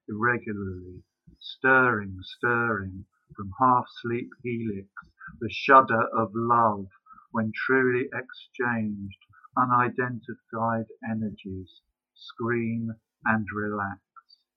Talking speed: 75 wpm